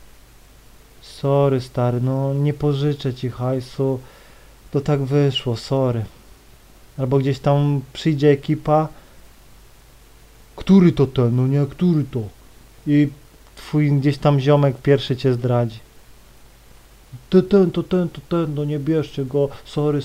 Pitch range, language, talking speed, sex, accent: 130-170 Hz, Polish, 125 wpm, male, native